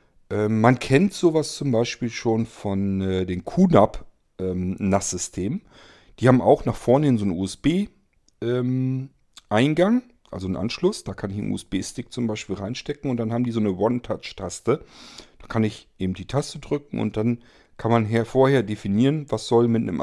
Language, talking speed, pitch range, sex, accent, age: German, 170 wpm, 100-135 Hz, male, German, 40-59